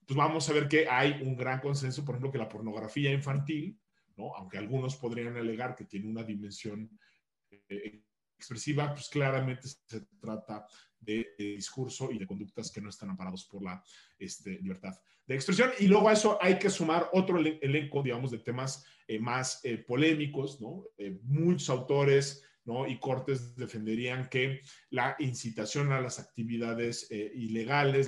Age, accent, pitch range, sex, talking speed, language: 40-59, Mexican, 110-140 Hz, male, 165 wpm, Spanish